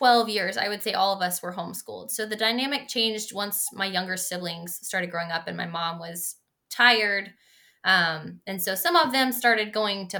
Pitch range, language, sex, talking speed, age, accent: 185-220 Hz, English, female, 205 wpm, 20-39, American